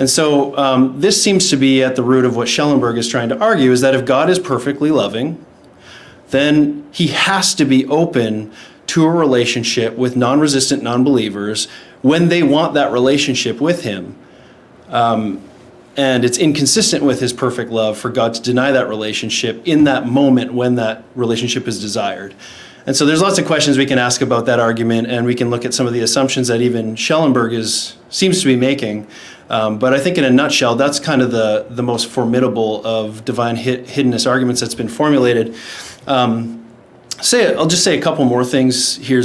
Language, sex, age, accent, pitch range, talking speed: English, male, 30-49, American, 120-140 Hz, 195 wpm